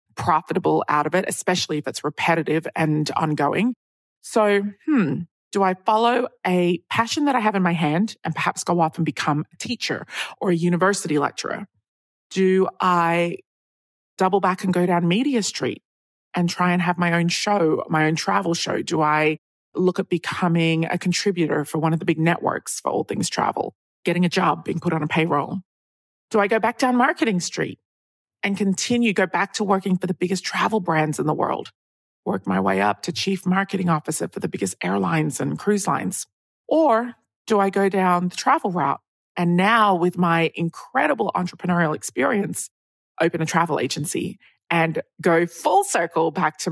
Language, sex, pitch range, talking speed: English, female, 160-195 Hz, 180 wpm